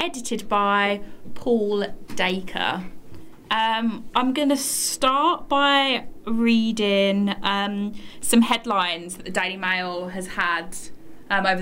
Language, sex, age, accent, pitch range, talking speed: English, female, 20-39, British, 185-230 Hz, 115 wpm